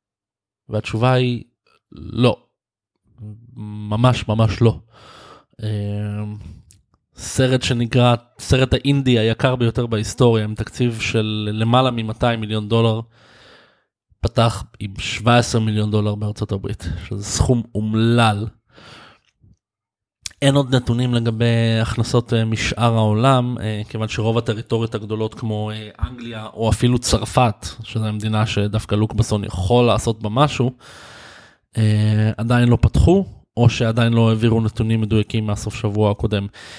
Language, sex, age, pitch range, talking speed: Hebrew, male, 20-39, 105-120 Hz, 105 wpm